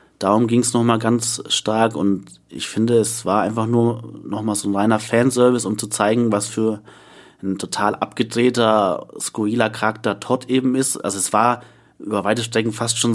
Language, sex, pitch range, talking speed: German, male, 105-120 Hz, 180 wpm